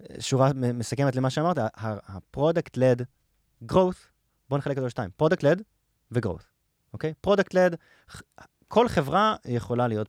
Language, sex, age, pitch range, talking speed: Hebrew, male, 20-39, 105-145 Hz, 155 wpm